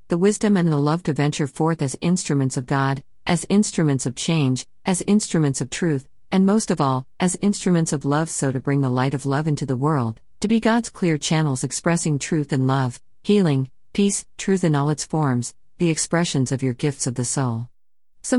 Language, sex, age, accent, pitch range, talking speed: English, female, 50-69, American, 135-170 Hz, 205 wpm